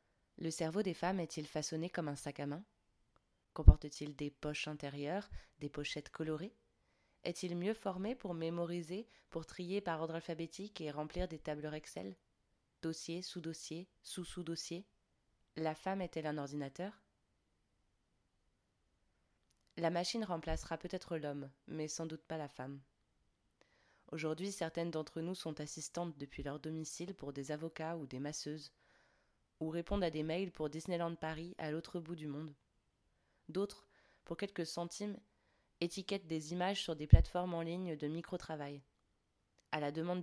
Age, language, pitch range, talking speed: 20-39, French, 150-175 Hz, 145 wpm